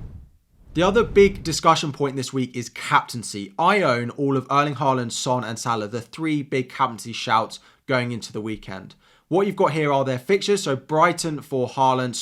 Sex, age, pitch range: male, 20-39, 120-150 Hz